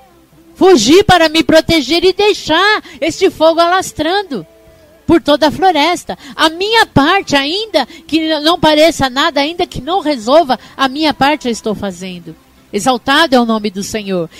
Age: 50-69